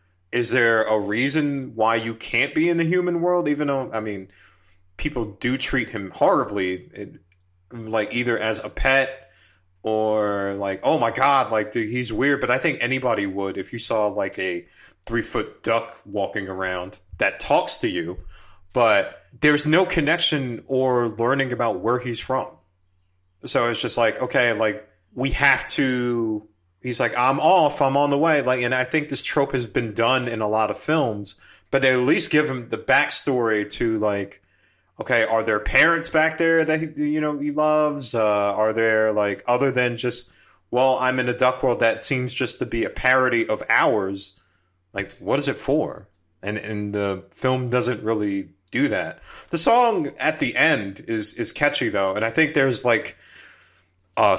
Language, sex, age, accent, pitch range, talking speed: English, male, 30-49, American, 100-130 Hz, 185 wpm